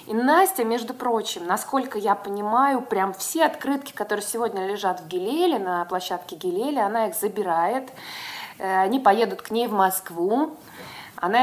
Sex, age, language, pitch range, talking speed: female, 20-39, Russian, 185-245 Hz, 145 wpm